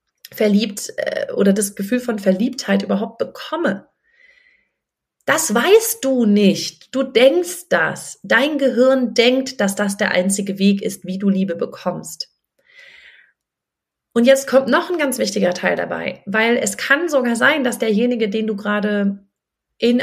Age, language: 30-49, German